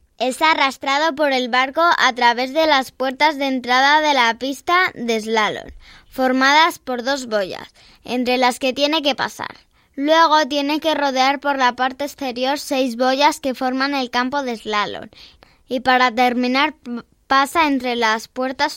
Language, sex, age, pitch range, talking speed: Spanish, male, 10-29, 240-290 Hz, 160 wpm